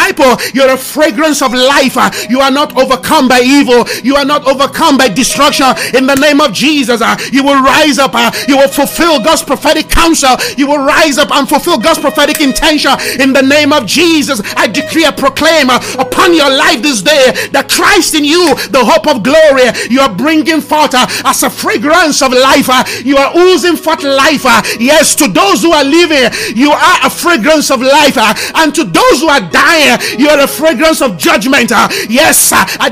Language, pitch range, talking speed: English, 270-310 Hz, 190 wpm